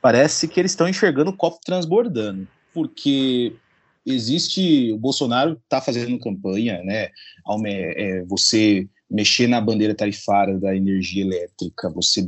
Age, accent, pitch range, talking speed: 30-49, Brazilian, 105-140 Hz, 120 wpm